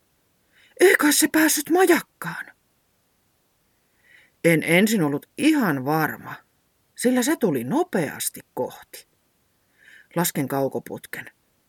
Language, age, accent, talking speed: Finnish, 30-49, native, 80 wpm